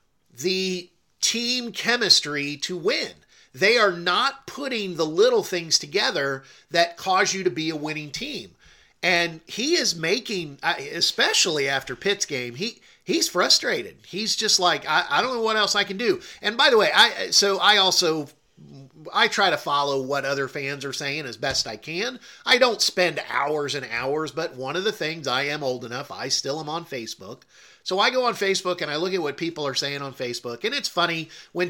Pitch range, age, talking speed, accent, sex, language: 140-200 Hz, 40-59, 195 wpm, American, male, English